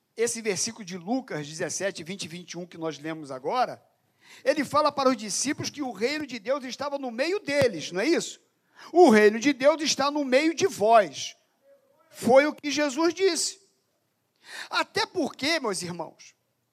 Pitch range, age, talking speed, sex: 225-335 Hz, 50-69, 170 wpm, male